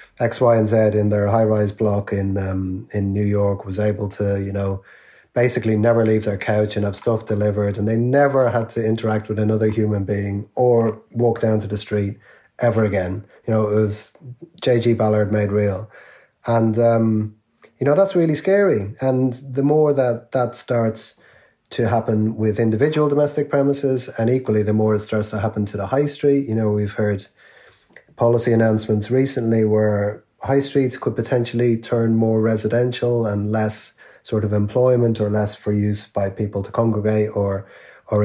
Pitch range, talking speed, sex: 105-120 Hz, 180 wpm, male